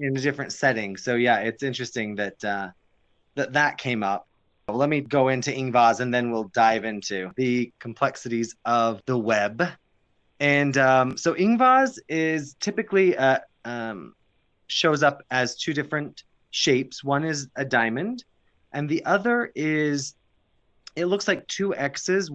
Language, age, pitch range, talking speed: English, 20-39, 115-145 Hz, 155 wpm